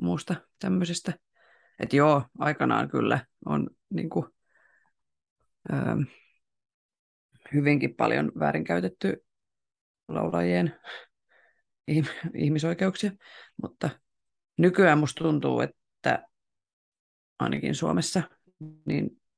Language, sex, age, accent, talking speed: Finnish, female, 30-49, native, 70 wpm